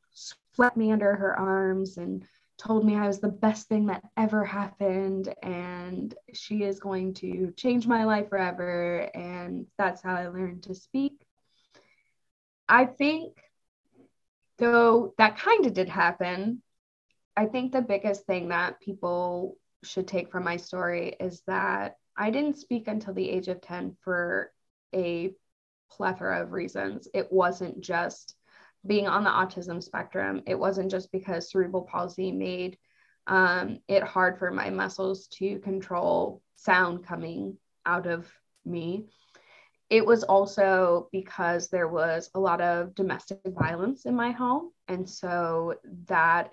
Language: English